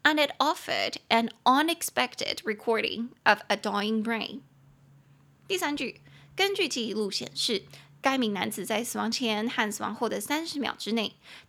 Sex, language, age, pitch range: female, Chinese, 20-39, 220-275 Hz